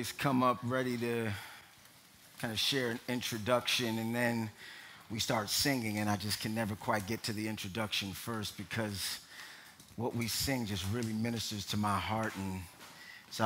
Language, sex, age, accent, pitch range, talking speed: English, male, 30-49, American, 100-120 Hz, 165 wpm